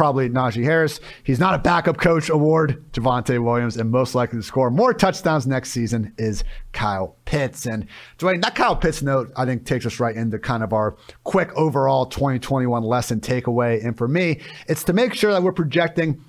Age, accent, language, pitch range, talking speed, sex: 30-49, American, English, 125-165 Hz, 190 wpm, male